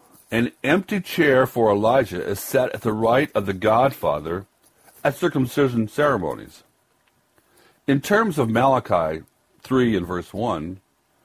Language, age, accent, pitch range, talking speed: English, 60-79, American, 90-130 Hz, 130 wpm